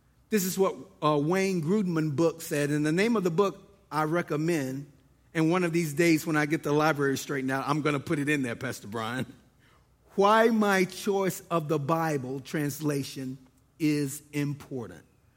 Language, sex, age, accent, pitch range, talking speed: English, male, 50-69, American, 150-205 Hz, 180 wpm